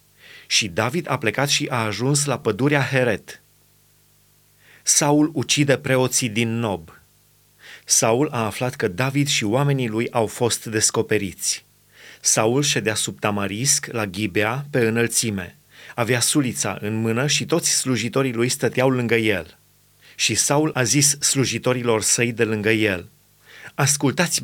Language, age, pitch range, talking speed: Romanian, 30-49, 120-150 Hz, 135 wpm